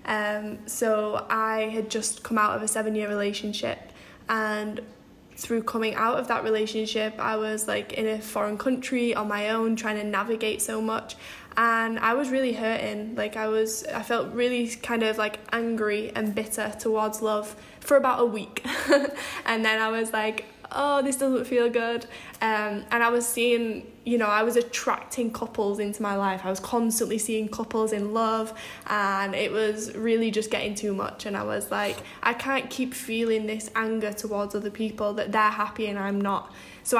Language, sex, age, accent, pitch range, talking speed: English, female, 10-29, British, 215-230 Hz, 185 wpm